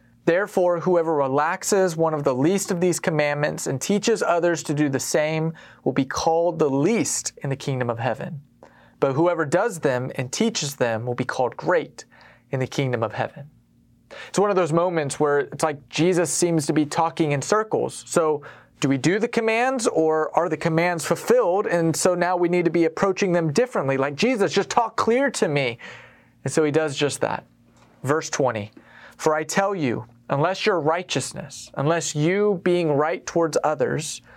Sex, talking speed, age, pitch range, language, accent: male, 185 wpm, 30-49, 140-180 Hz, English, American